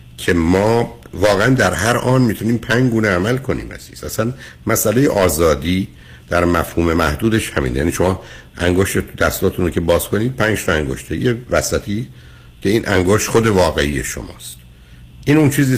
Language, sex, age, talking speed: Persian, male, 60-79, 155 wpm